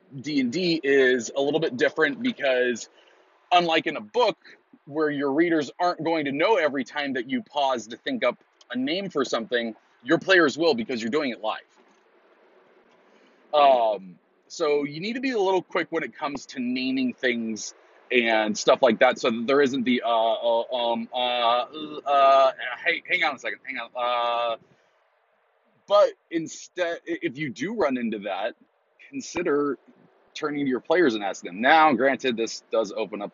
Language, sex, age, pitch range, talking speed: English, male, 30-49, 115-180 Hz, 175 wpm